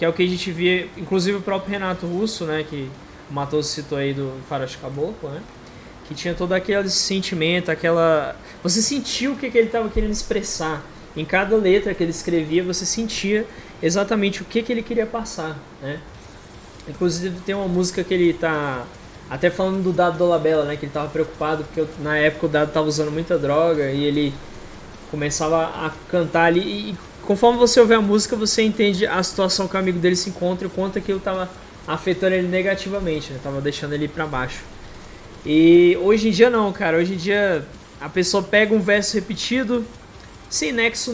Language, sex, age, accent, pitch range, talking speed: Portuguese, male, 20-39, Brazilian, 155-200 Hz, 195 wpm